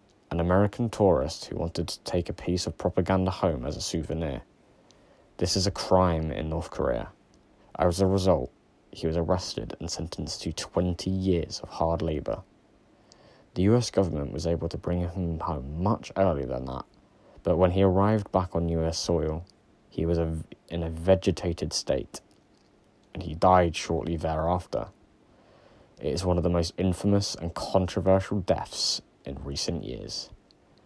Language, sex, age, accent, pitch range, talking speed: English, male, 20-39, British, 80-95 Hz, 155 wpm